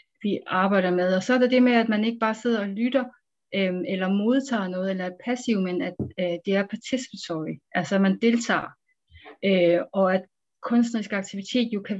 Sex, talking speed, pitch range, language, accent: female, 200 wpm, 185-235 Hz, Danish, native